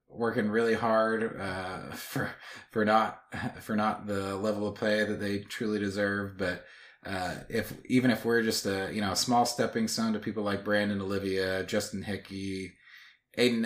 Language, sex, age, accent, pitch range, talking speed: English, male, 20-39, American, 100-120 Hz, 170 wpm